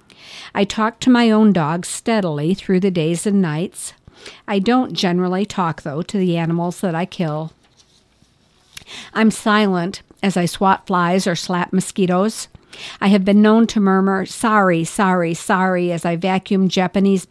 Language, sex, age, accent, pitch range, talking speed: English, female, 50-69, American, 175-205 Hz, 155 wpm